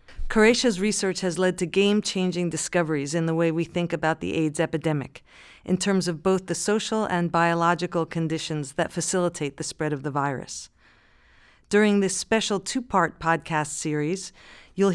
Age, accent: 50-69, American